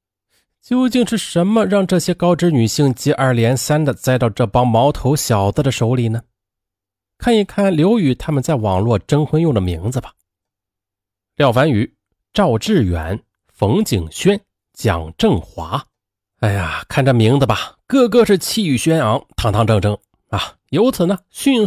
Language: Chinese